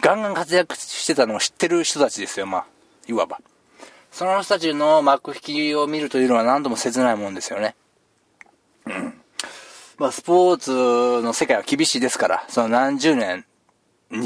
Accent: native